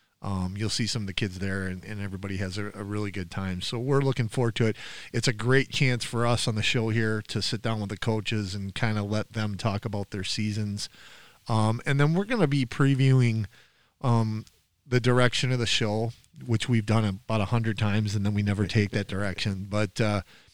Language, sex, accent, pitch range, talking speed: English, male, American, 105-125 Hz, 225 wpm